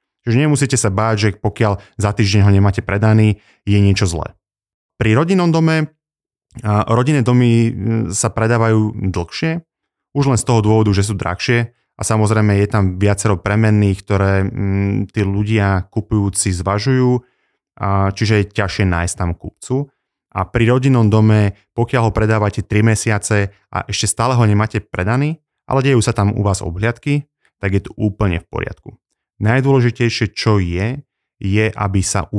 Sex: male